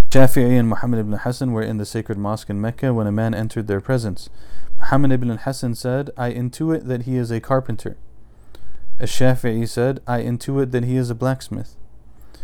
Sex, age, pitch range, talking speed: male, 30-49, 105-130 Hz, 190 wpm